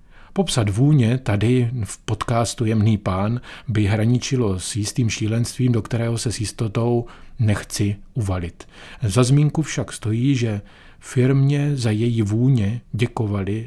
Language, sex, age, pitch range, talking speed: Czech, male, 40-59, 100-125 Hz, 125 wpm